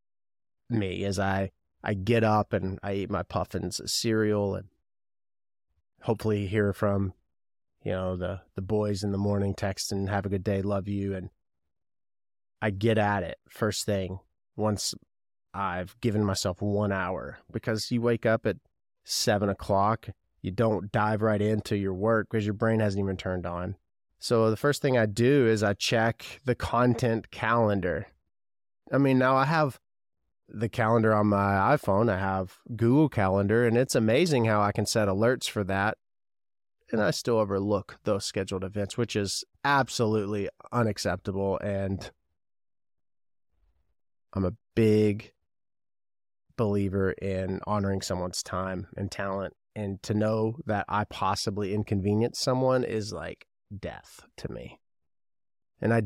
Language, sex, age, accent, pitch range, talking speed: English, male, 30-49, American, 95-110 Hz, 150 wpm